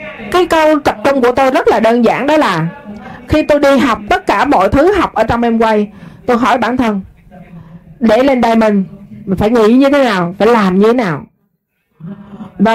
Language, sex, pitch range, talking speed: Vietnamese, female, 200-270 Hz, 200 wpm